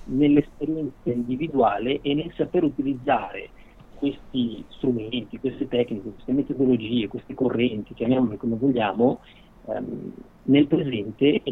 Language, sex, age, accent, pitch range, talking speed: Italian, male, 40-59, native, 115-145 Hz, 110 wpm